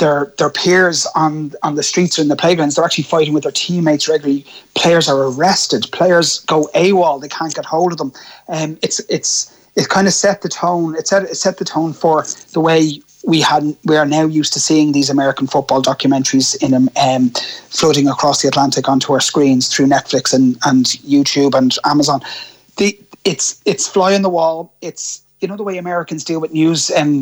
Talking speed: 210 wpm